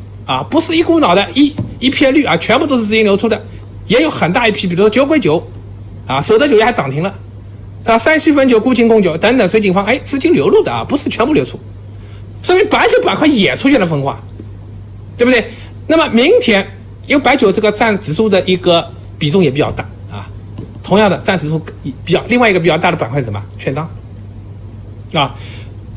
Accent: native